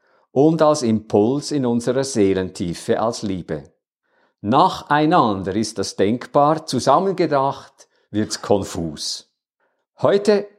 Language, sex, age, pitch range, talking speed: German, male, 50-69, 105-145 Hz, 90 wpm